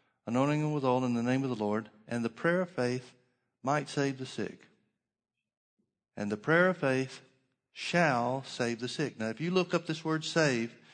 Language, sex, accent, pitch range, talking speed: English, male, American, 120-145 Hz, 190 wpm